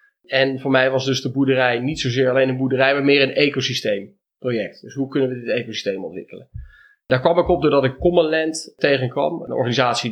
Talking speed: 195 wpm